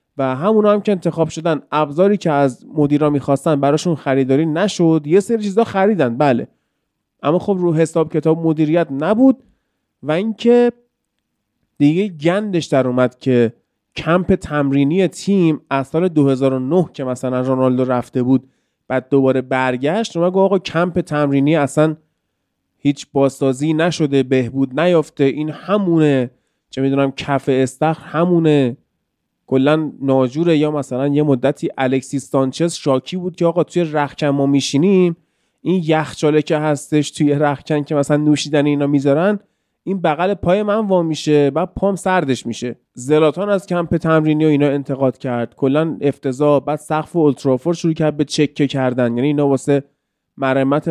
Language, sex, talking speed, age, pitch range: Persian, male, 145 wpm, 30-49, 135-170 Hz